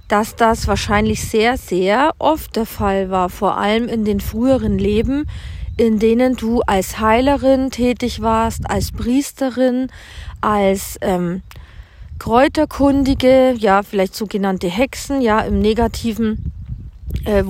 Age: 40-59